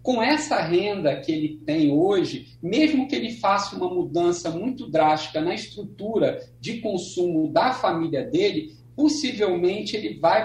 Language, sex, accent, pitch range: Portuguese, male, Brazilian, 160-225 Hz